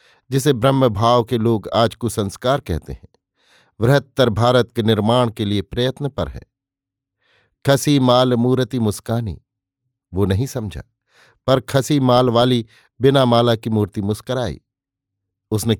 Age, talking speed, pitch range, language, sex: 50-69, 135 wpm, 105-130 Hz, Hindi, male